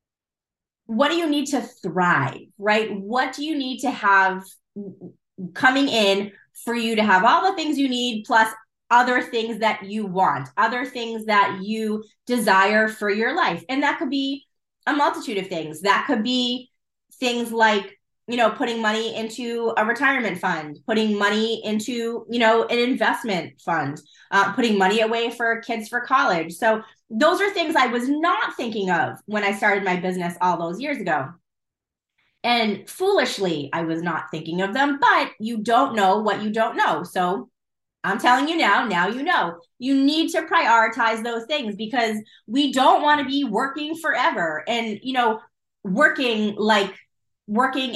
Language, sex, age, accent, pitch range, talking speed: English, female, 20-39, American, 205-255 Hz, 170 wpm